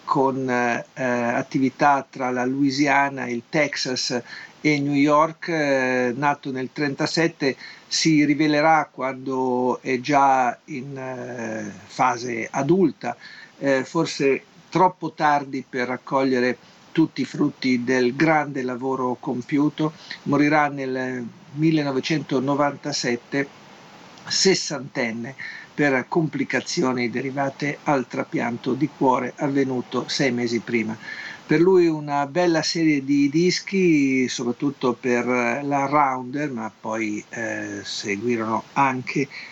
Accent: native